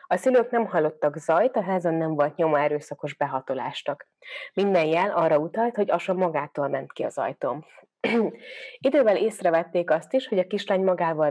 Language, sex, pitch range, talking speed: Hungarian, female, 150-205 Hz, 165 wpm